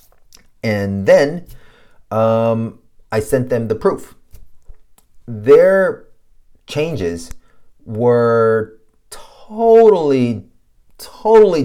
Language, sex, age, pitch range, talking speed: English, male, 30-49, 100-130 Hz, 65 wpm